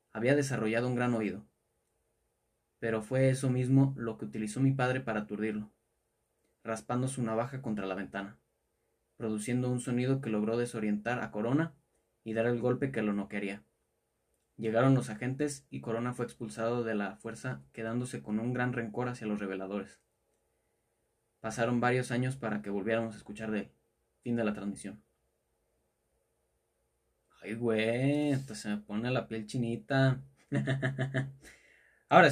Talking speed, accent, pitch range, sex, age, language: 150 wpm, Mexican, 110-135 Hz, male, 20-39, Spanish